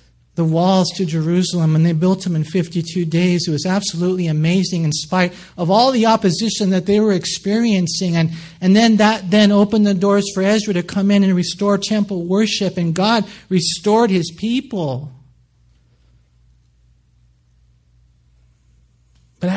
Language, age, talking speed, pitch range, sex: English, 50-69, 145 wpm, 150-190 Hz, male